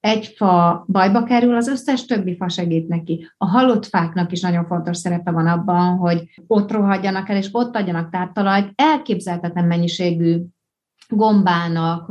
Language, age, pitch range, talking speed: Hungarian, 30-49, 170-210 Hz, 150 wpm